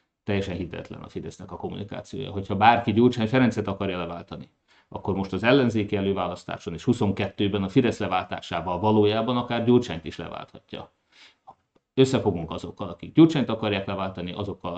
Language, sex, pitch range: Hungarian, male, 90-110 Hz